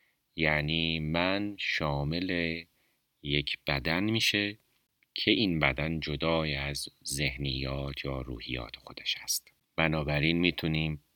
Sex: male